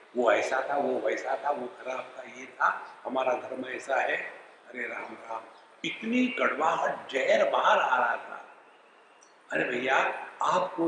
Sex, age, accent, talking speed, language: male, 60-79, Indian, 155 wpm, English